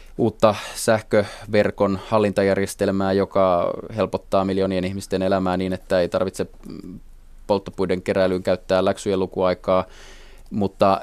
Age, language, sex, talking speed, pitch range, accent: 20-39, Finnish, male, 100 wpm, 95-110 Hz, native